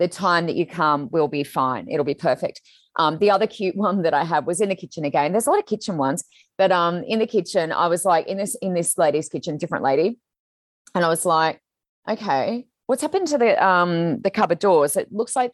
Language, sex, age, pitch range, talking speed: English, female, 30-49, 160-210 Hz, 240 wpm